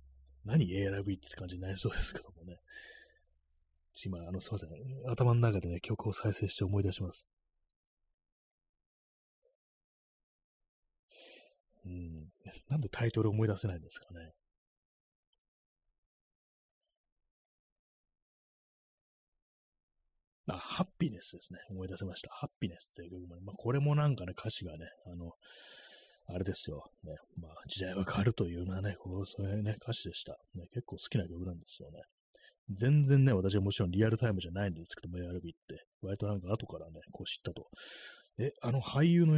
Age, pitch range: 30-49, 85-110 Hz